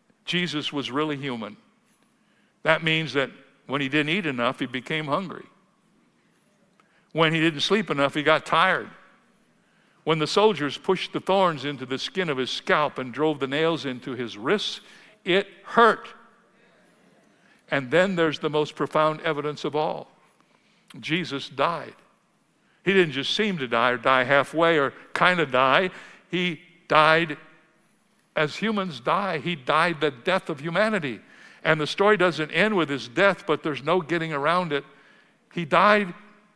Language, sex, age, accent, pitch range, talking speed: English, male, 60-79, American, 150-195 Hz, 155 wpm